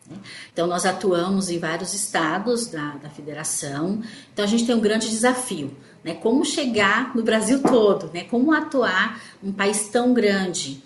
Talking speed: 160 wpm